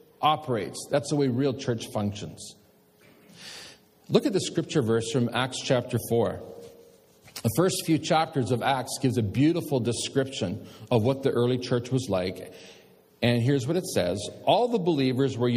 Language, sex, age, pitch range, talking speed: English, male, 40-59, 120-160 Hz, 160 wpm